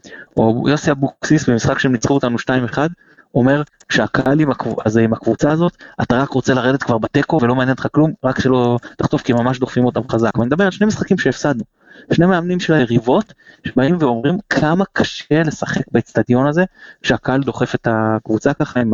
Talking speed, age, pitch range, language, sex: 170 wpm, 20-39, 115-140 Hz, Hebrew, male